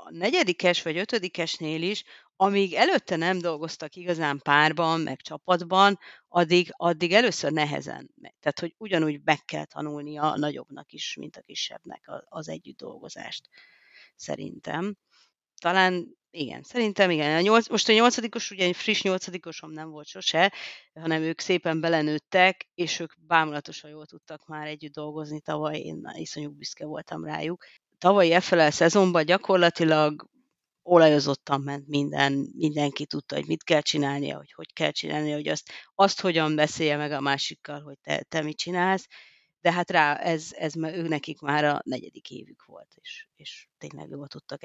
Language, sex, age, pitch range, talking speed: Hungarian, female, 30-49, 150-185 Hz, 155 wpm